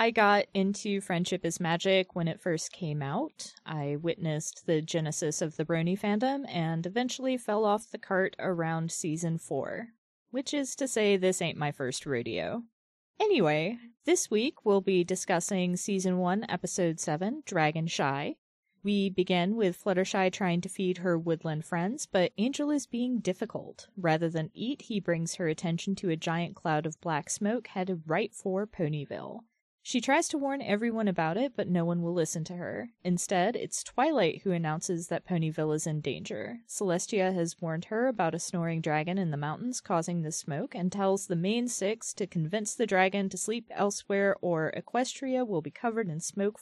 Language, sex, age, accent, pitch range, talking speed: English, female, 20-39, American, 165-210 Hz, 180 wpm